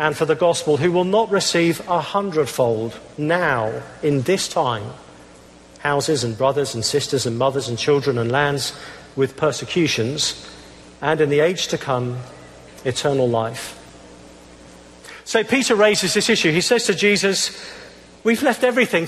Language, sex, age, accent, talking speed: English, male, 50-69, British, 150 wpm